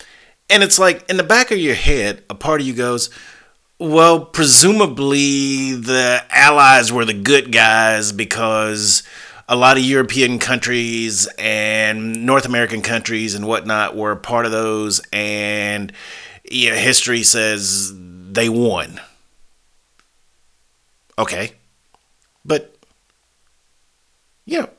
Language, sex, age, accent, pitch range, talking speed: English, male, 30-49, American, 100-135 Hz, 110 wpm